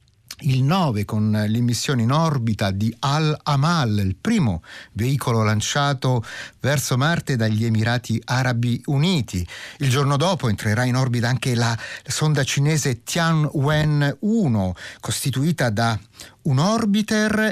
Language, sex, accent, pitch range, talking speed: Italian, male, native, 115-160 Hz, 115 wpm